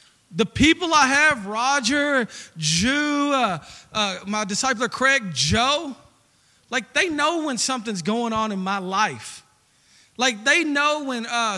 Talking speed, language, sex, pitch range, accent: 140 wpm, English, male, 190-255 Hz, American